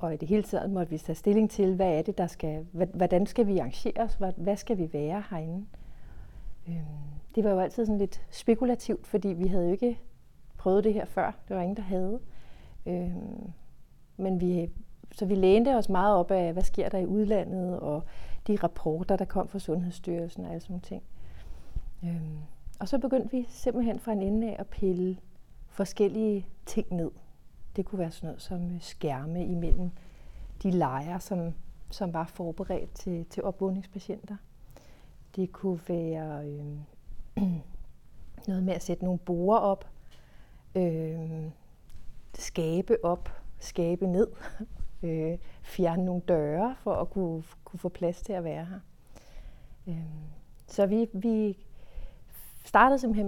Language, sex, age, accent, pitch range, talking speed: Danish, female, 40-59, native, 165-205 Hz, 155 wpm